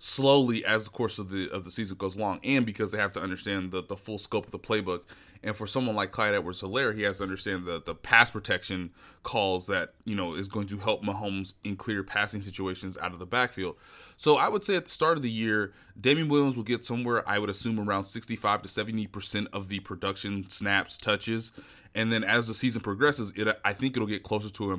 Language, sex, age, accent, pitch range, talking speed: English, male, 20-39, American, 100-125 Hz, 235 wpm